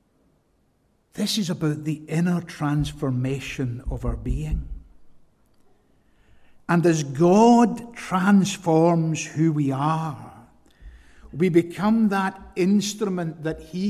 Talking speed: 95 wpm